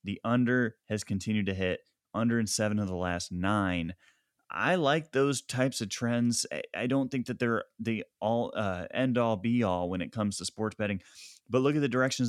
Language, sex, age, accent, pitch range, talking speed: English, male, 30-49, American, 95-115 Hz, 205 wpm